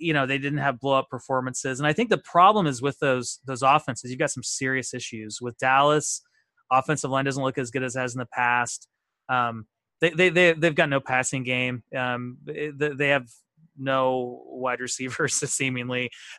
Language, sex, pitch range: English, male, 125-150 Hz